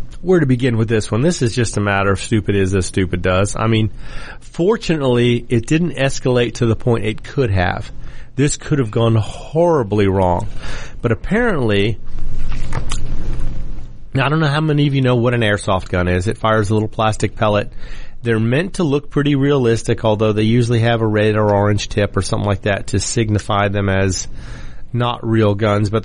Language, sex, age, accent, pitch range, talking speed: English, male, 40-59, American, 105-135 Hz, 190 wpm